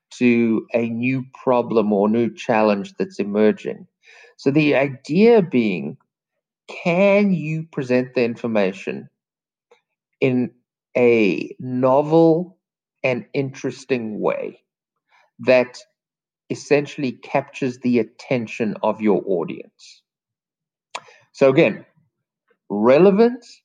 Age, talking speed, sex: 50-69, 90 wpm, male